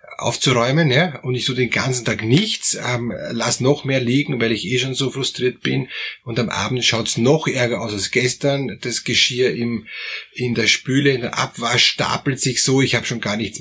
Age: 20-39